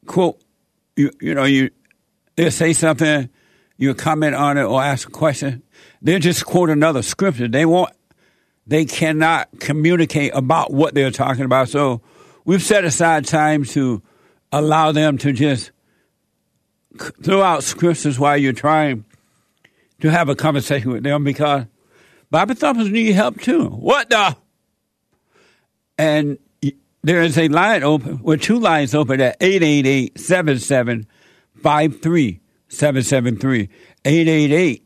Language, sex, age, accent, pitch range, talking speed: English, male, 60-79, American, 135-160 Hz, 125 wpm